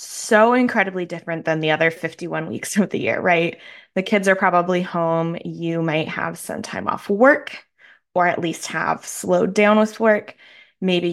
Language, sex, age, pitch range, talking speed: English, female, 20-39, 170-210 Hz, 180 wpm